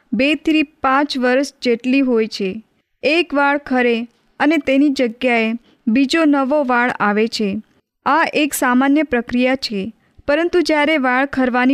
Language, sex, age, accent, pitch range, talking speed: Hindi, female, 20-39, native, 240-285 Hz, 90 wpm